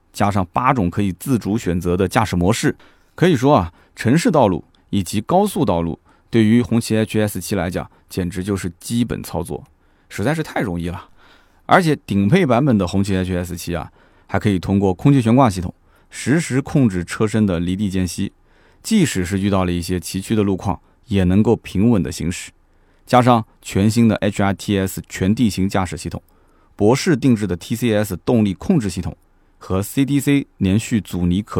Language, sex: Chinese, male